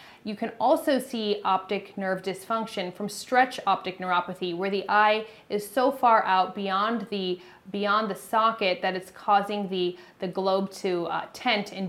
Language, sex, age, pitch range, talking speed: English, female, 20-39, 185-225 Hz, 165 wpm